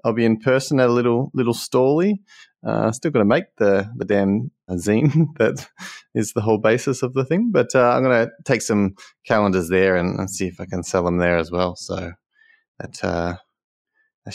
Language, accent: English, Australian